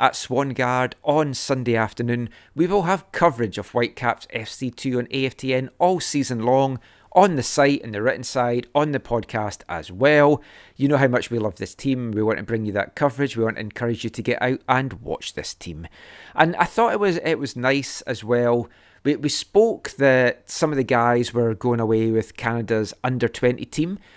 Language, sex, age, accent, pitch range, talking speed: English, male, 30-49, British, 115-135 Hz, 205 wpm